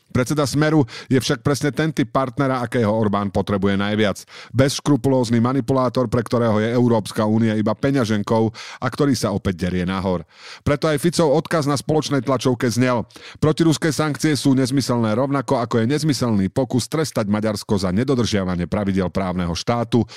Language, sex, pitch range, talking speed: Slovak, male, 105-140 Hz, 150 wpm